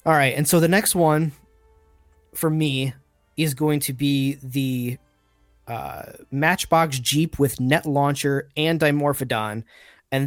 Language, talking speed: English, 135 wpm